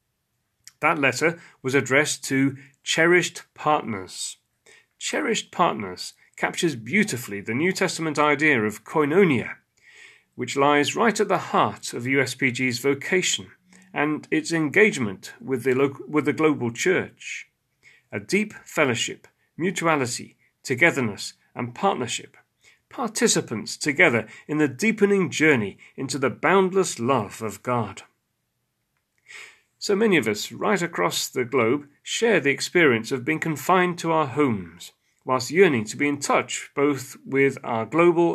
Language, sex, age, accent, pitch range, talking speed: English, male, 40-59, British, 130-170 Hz, 130 wpm